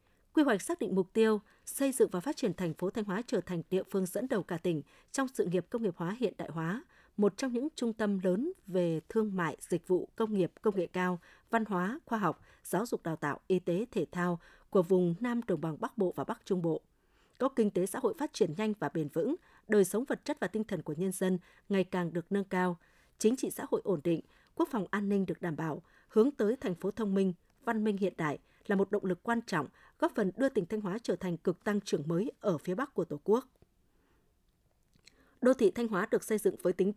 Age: 20-39